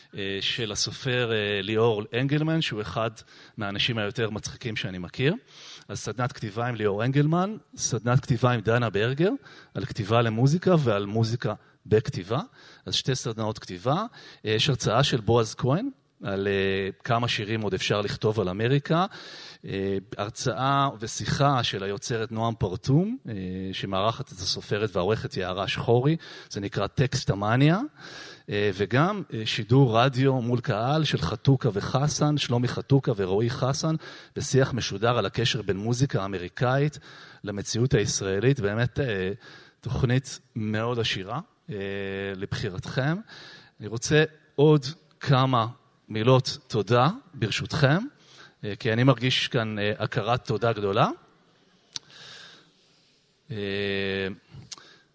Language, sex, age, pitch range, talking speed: Hebrew, male, 30-49, 105-140 Hz, 110 wpm